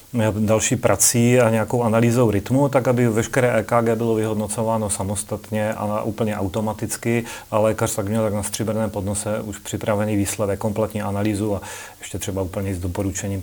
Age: 30-49